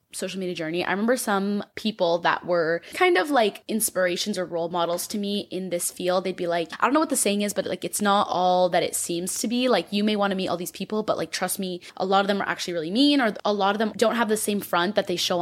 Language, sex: English, female